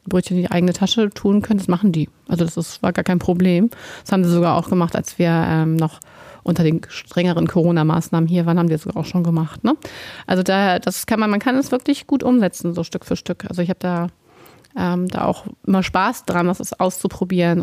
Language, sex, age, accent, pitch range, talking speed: German, female, 30-49, German, 175-200 Hz, 230 wpm